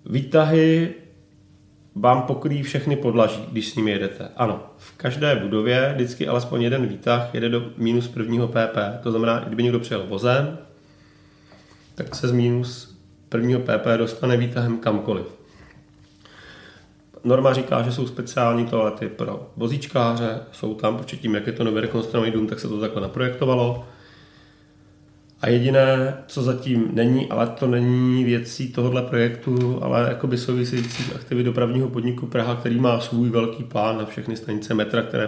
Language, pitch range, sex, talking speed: Czech, 110-130 Hz, male, 150 wpm